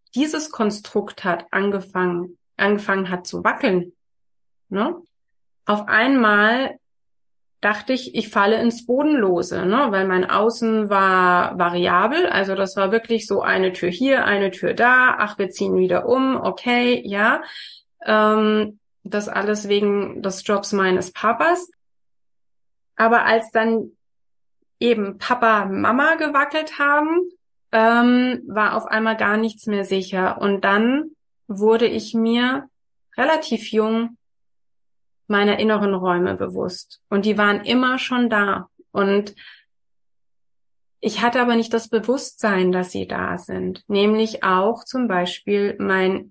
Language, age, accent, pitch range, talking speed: German, 30-49, German, 195-240 Hz, 125 wpm